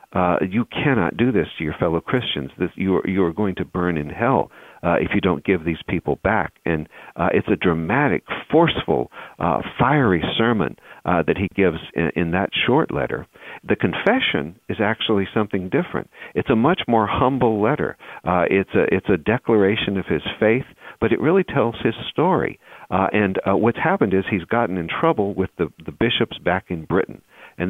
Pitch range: 90-110 Hz